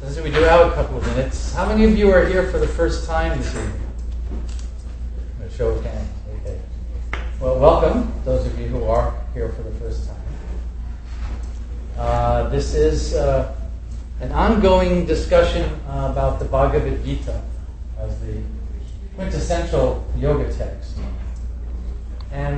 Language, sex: English, male